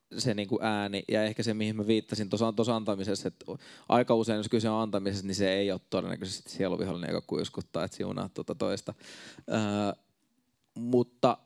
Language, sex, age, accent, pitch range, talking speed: Finnish, male, 20-39, native, 95-115 Hz, 175 wpm